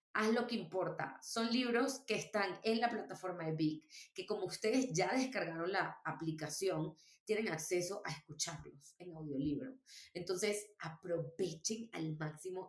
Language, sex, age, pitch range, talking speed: Spanish, female, 20-39, 165-210 Hz, 140 wpm